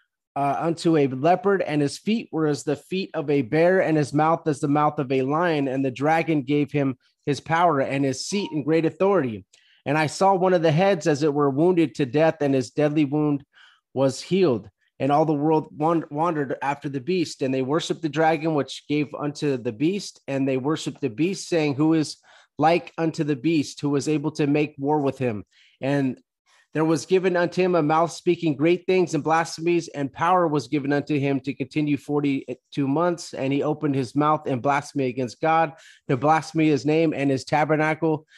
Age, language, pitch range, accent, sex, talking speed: 30-49, English, 140-165 Hz, American, male, 205 wpm